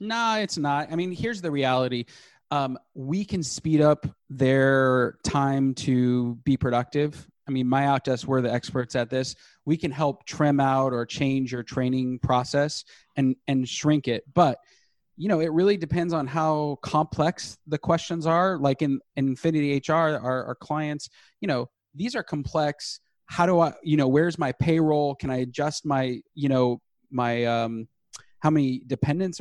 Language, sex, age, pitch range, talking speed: English, male, 20-39, 125-155 Hz, 175 wpm